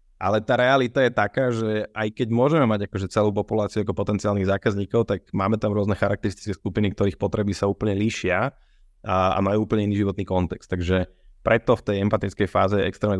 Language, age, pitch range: Slovak, 20-39, 95-110 Hz